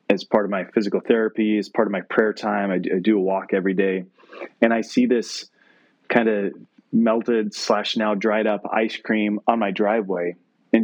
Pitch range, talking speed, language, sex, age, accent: 105-125 Hz, 200 wpm, English, male, 30-49, American